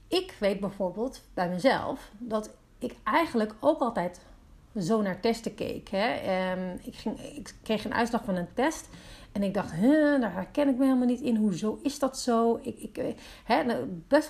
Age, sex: 40-59, female